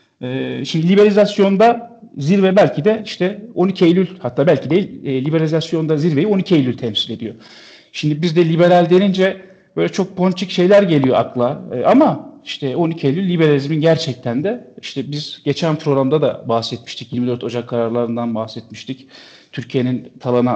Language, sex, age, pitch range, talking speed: Turkish, male, 50-69, 130-190 Hz, 145 wpm